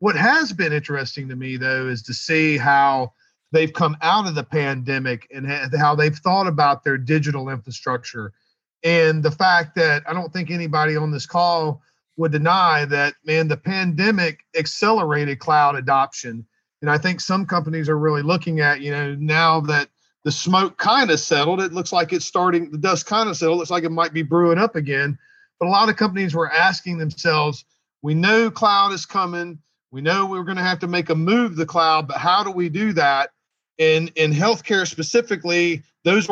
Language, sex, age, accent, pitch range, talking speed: English, male, 40-59, American, 150-180 Hz, 200 wpm